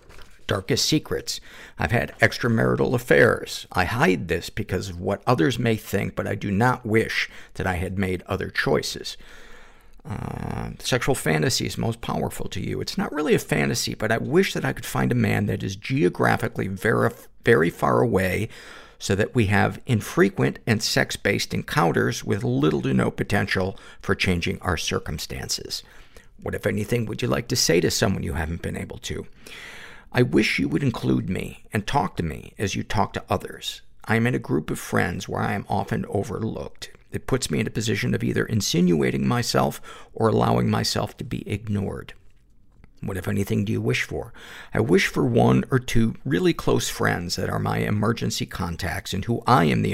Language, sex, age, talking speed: English, male, 50-69, 185 wpm